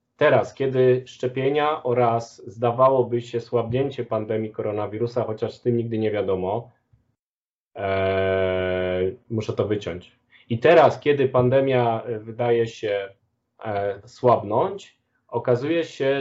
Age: 20-39